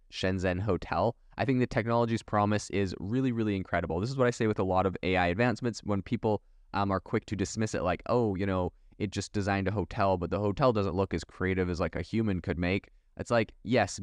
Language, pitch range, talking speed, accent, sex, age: English, 95-110 Hz, 235 wpm, American, male, 20-39